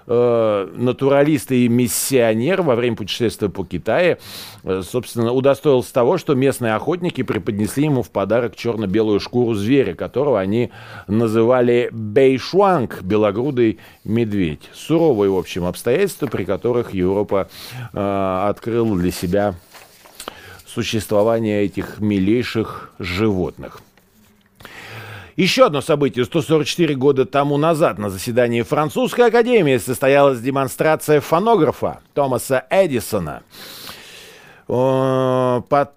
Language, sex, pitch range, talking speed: Russian, male, 105-135 Hz, 95 wpm